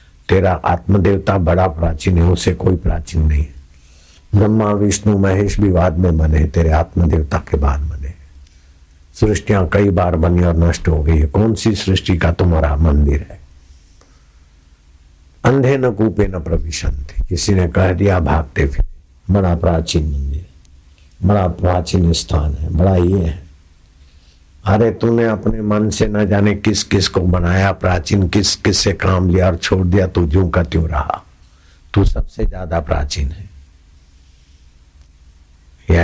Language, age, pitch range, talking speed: Hindi, 60-79, 75-95 Hz, 145 wpm